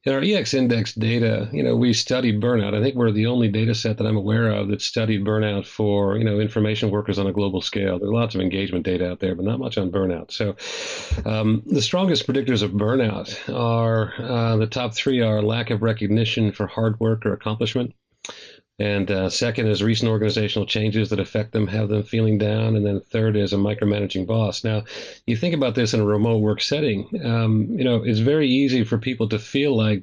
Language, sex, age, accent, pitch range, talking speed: English, male, 50-69, American, 105-115 Hz, 215 wpm